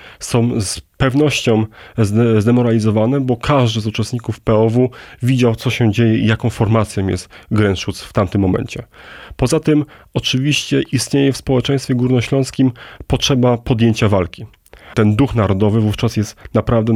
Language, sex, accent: Polish, male, native